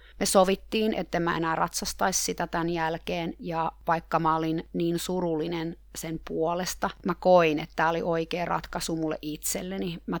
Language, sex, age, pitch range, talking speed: Finnish, female, 30-49, 160-180 Hz, 160 wpm